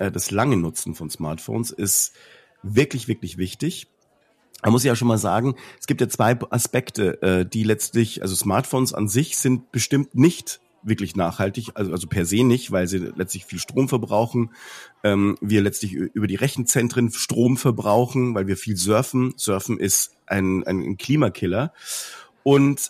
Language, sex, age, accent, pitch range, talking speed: German, male, 40-59, German, 100-130 Hz, 155 wpm